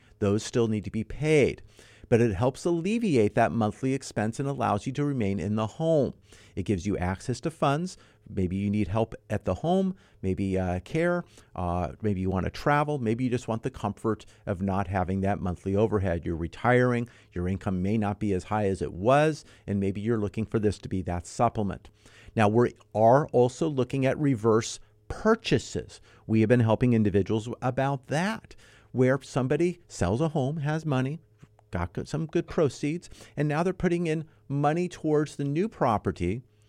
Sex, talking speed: male, 185 wpm